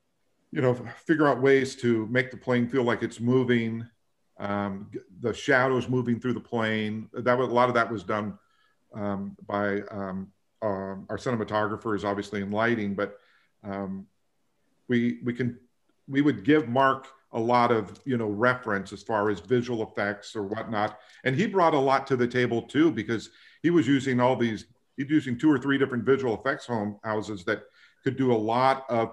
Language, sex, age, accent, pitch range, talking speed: English, male, 50-69, American, 100-125 Hz, 185 wpm